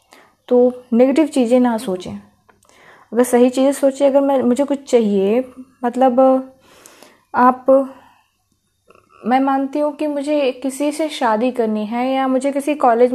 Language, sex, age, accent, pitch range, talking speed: Hindi, female, 20-39, native, 220-270 Hz, 135 wpm